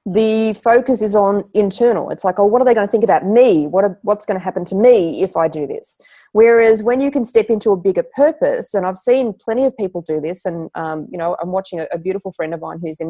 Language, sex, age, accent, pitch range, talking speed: English, female, 30-49, Australian, 175-245 Hz, 270 wpm